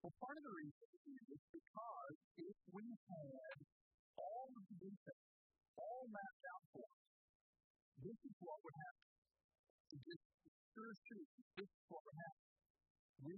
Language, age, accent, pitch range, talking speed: English, 50-69, American, 165-235 Hz, 140 wpm